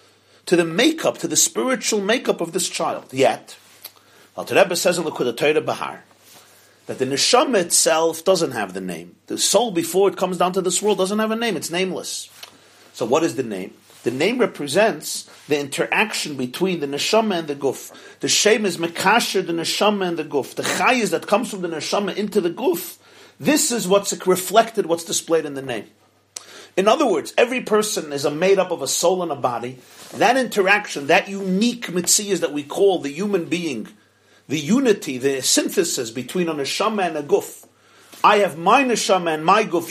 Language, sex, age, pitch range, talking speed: English, male, 40-59, 155-210 Hz, 190 wpm